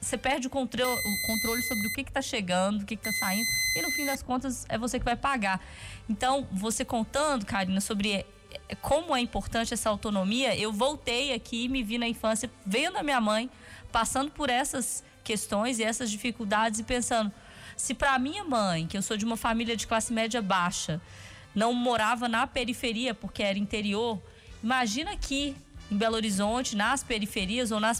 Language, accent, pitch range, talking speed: Portuguese, Brazilian, 210-260 Hz, 190 wpm